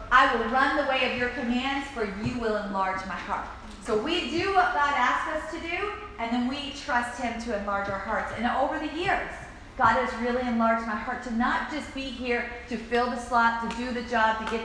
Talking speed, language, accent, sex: 235 wpm, English, American, female